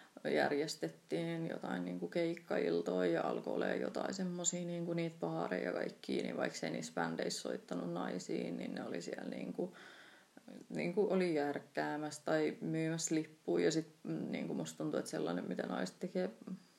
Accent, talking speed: native, 150 wpm